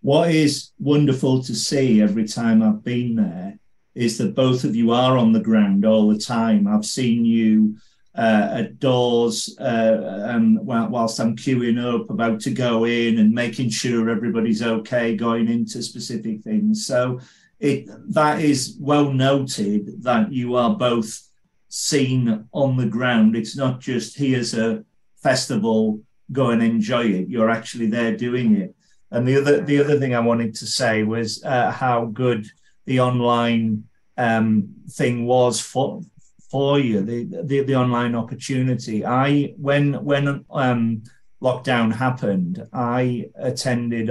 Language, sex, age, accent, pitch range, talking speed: English, male, 40-59, British, 115-135 Hz, 150 wpm